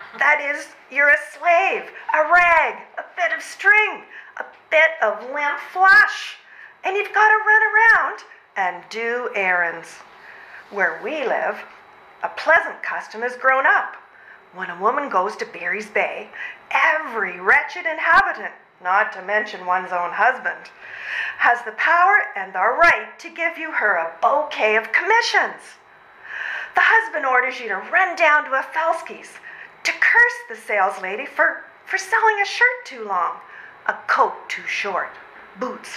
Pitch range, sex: 250-405 Hz, female